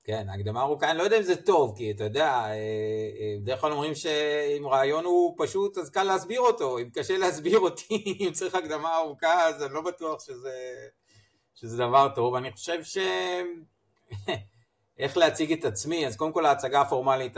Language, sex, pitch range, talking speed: Hebrew, male, 110-170 Hz, 175 wpm